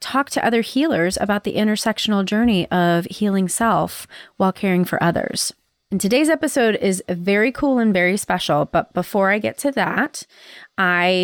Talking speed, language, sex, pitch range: 165 wpm, English, female, 175-230 Hz